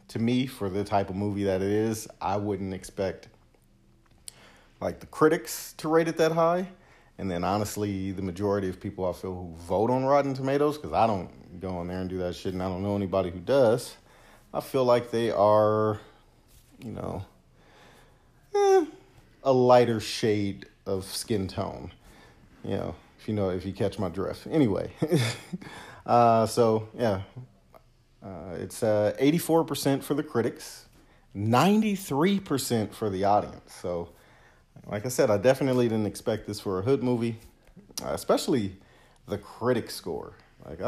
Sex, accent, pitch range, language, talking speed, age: male, American, 95-125 Hz, English, 160 wpm, 40-59